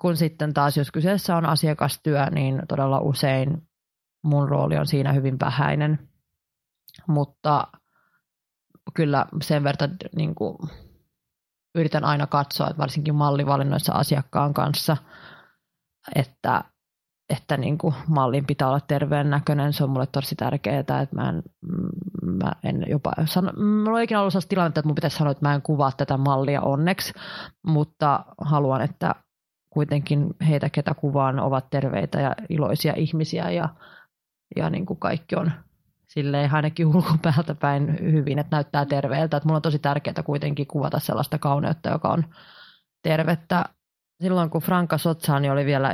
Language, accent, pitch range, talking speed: Finnish, native, 140-160 Hz, 140 wpm